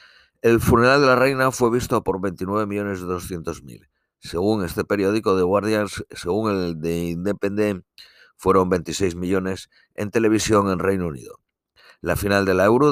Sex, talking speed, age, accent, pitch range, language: male, 145 wpm, 50-69, Spanish, 85-105 Hz, Spanish